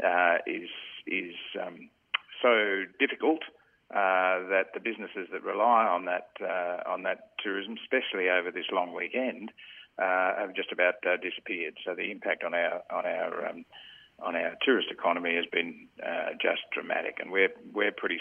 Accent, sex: Australian, male